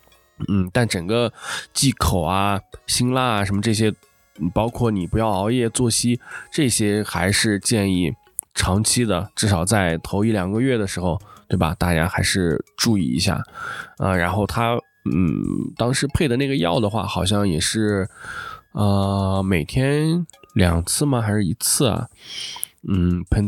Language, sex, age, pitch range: Chinese, male, 20-39, 95-120 Hz